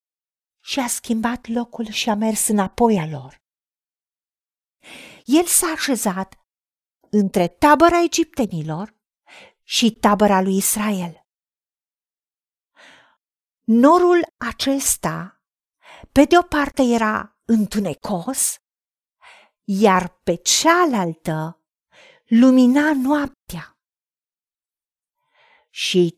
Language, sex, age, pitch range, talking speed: Romanian, female, 50-69, 200-305 Hz, 80 wpm